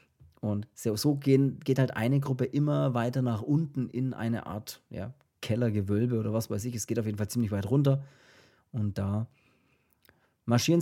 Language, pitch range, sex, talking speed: German, 115-140 Hz, male, 160 wpm